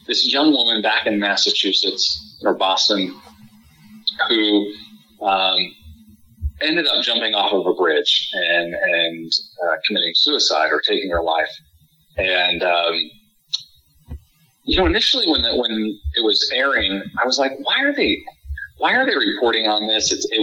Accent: American